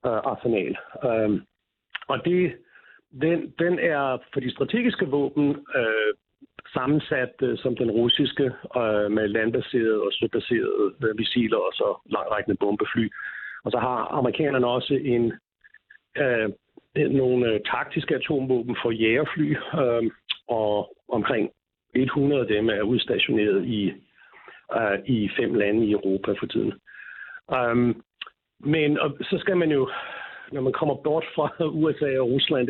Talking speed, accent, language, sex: 110 wpm, native, Danish, male